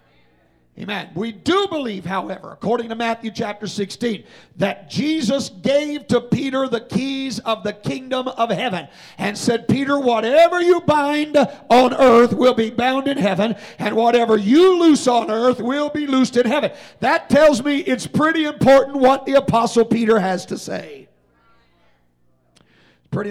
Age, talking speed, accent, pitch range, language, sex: 50-69, 155 wpm, American, 185-240 Hz, English, male